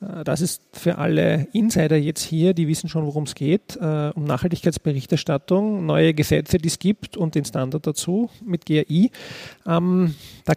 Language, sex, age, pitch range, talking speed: German, male, 40-59, 145-175 Hz, 165 wpm